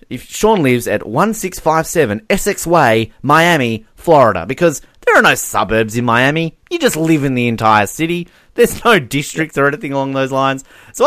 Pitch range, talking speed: 110-170 Hz, 175 wpm